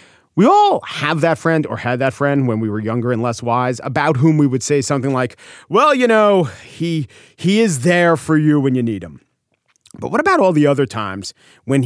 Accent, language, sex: American, English, male